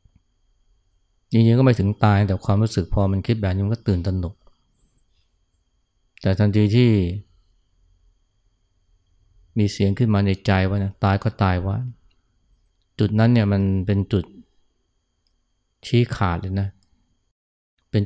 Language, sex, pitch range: Thai, male, 90-105 Hz